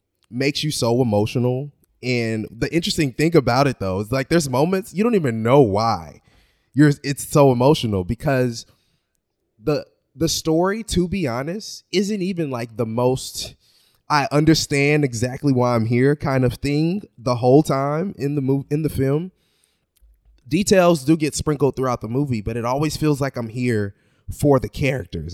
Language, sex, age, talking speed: English, male, 20-39, 170 wpm